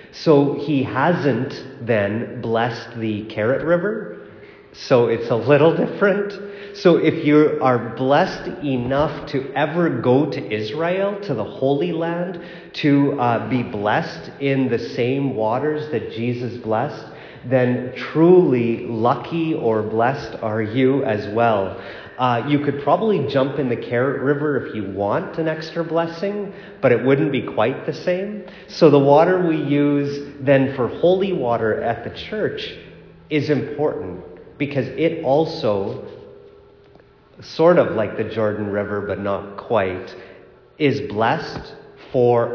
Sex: male